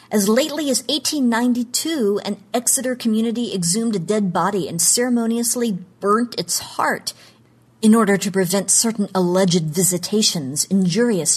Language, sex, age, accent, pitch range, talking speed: English, female, 50-69, American, 170-230 Hz, 125 wpm